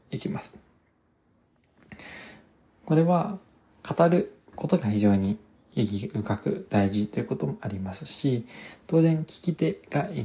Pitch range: 105-145 Hz